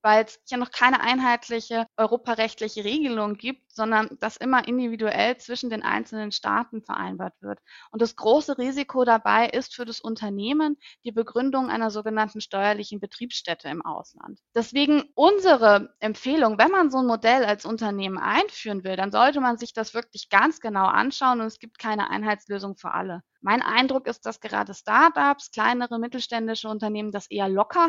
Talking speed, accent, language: 165 wpm, German, German